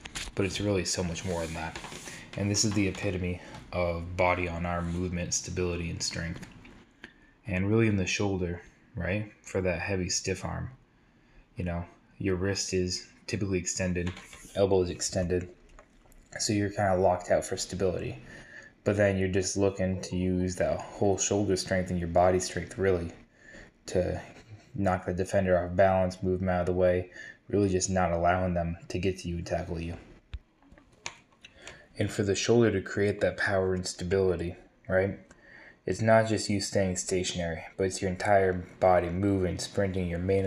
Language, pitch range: English, 90-100 Hz